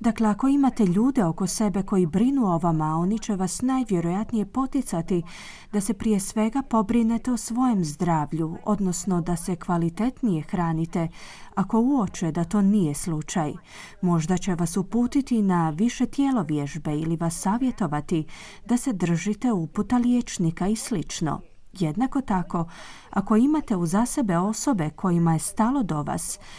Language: Croatian